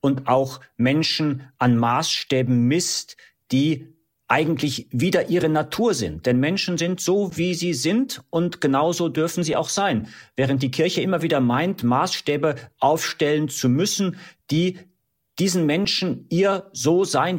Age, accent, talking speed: 50-69, German, 140 wpm